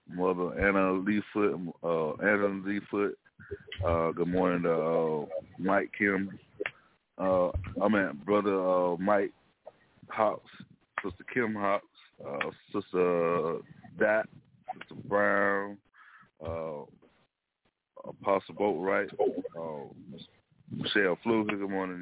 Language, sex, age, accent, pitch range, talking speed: English, male, 30-49, American, 90-100 Hz, 105 wpm